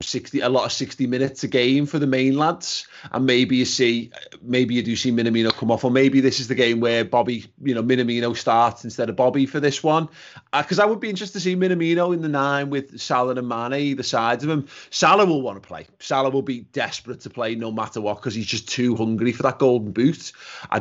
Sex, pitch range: male, 115-130 Hz